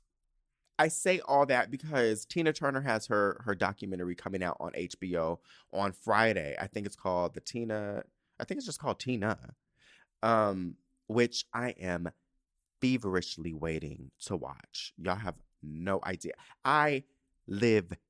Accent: American